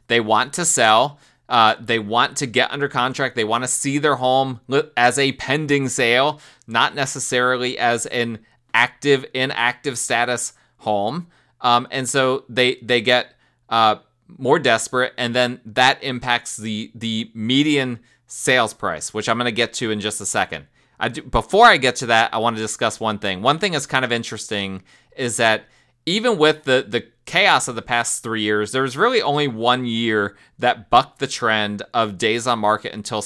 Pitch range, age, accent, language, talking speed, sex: 110-130 Hz, 20-39, American, English, 185 wpm, male